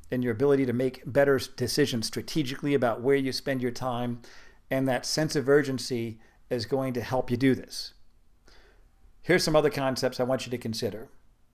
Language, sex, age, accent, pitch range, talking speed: English, male, 50-69, American, 120-155 Hz, 180 wpm